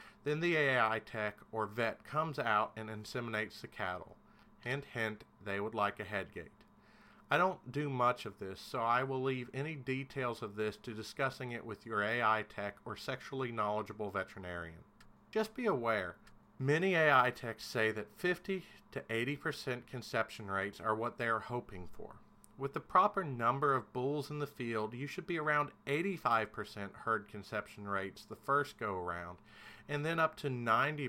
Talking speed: 175 wpm